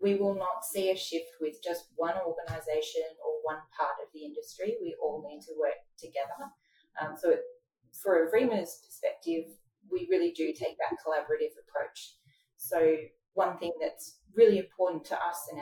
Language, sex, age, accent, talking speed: English, female, 30-49, Australian, 165 wpm